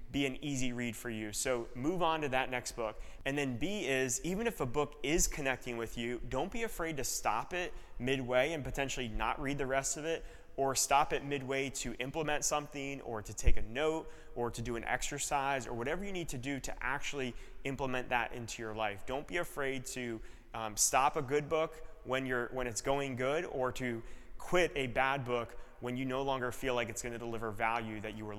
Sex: male